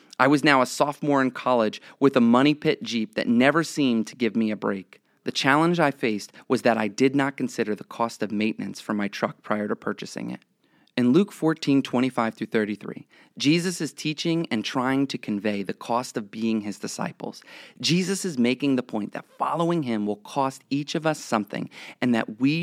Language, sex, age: English, male, 30-49